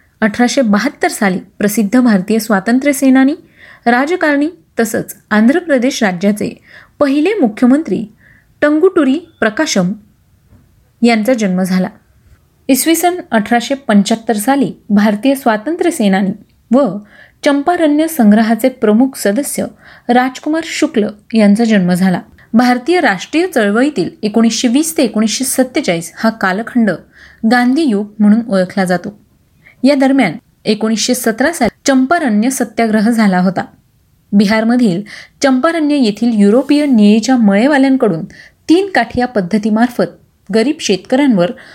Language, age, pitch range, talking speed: Marathi, 30-49, 210-270 Hz, 100 wpm